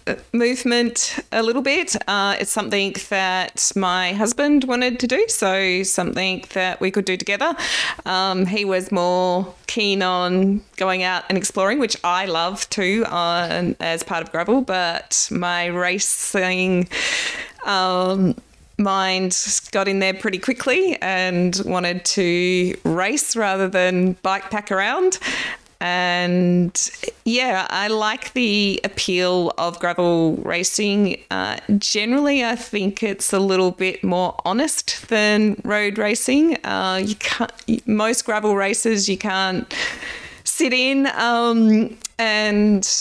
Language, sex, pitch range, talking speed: English, female, 185-225 Hz, 130 wpm